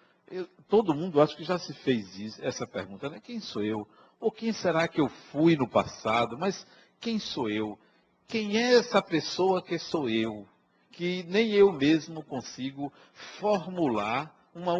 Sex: male